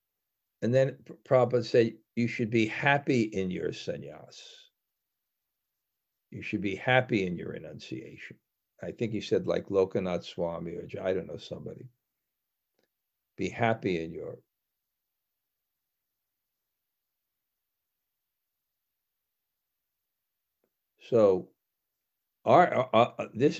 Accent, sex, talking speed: American, male, 90 wpm